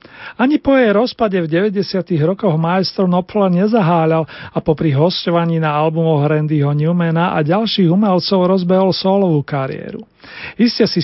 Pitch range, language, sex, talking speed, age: 160-200 Hz, Slovak, male, 140 wpm, 40-59